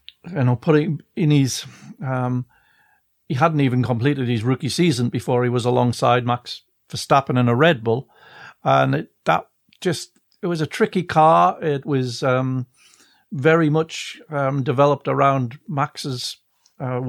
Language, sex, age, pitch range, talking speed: English, male, 50-69, 125-145 Hz, 145 wpm